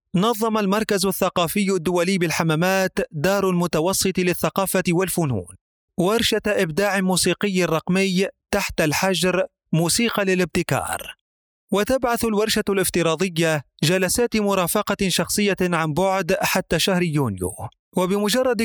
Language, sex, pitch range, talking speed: Arabic, male, 170-200 Hz, 95 wpm